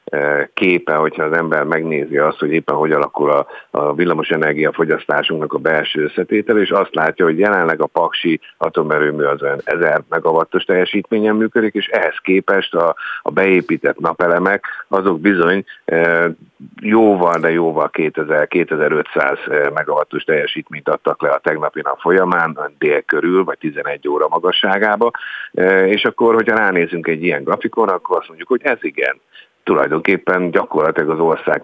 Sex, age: male, 50-69